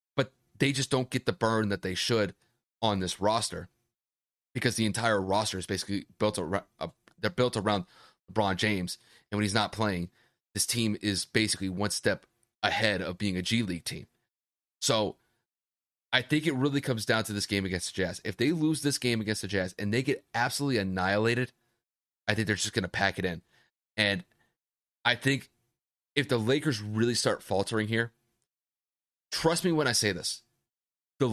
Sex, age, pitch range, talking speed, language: male, 30-49, 95-125 Hz, 180 wpm, English